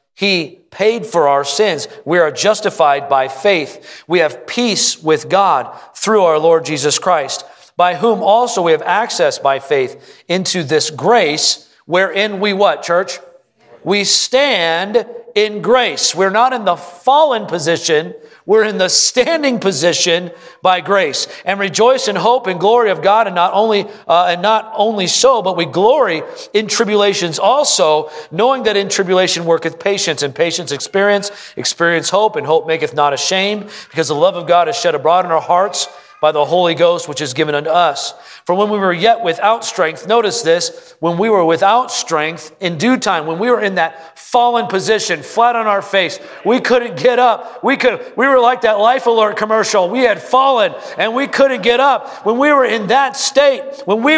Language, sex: English, male